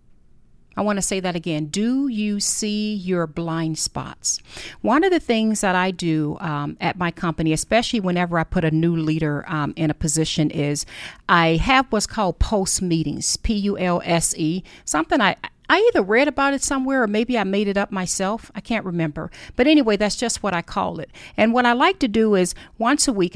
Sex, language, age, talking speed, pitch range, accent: female, English, 40-59, 200 wpm, 165-210 Hz, American